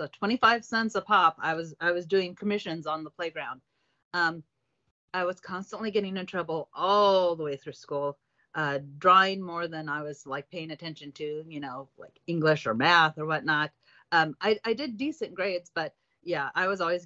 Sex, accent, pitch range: female, American, 155-200 Hz